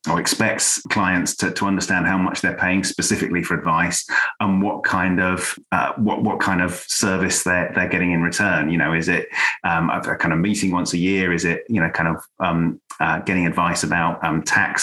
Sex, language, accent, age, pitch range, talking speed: male, English, British, 30-49, 90-100 Hz, 215 wpm